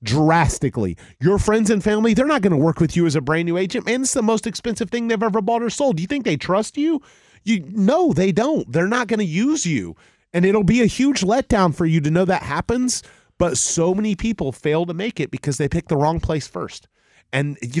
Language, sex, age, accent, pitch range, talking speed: English, male, 30-49, American, 140-195 Hz, 245 wpm